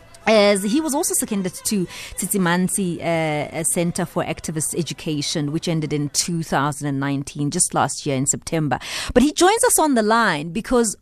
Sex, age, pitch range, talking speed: female, 30-49, 170-230 Hz, 160 wpm